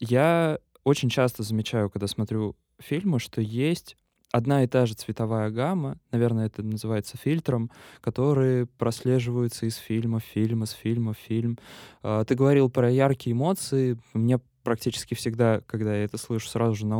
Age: 20-39